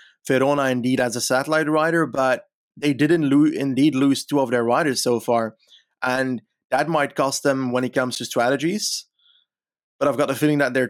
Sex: male